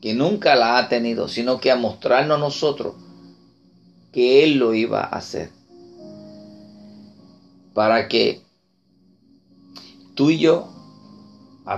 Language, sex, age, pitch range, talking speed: Spanish, male, 40-59, 95-135 Hz, 115 wpm